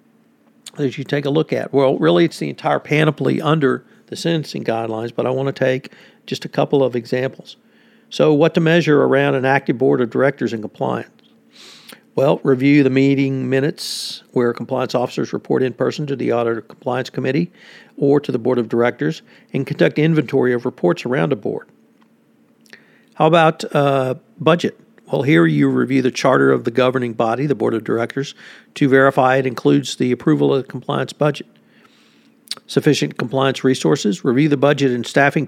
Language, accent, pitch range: English, American, 125-150 Hz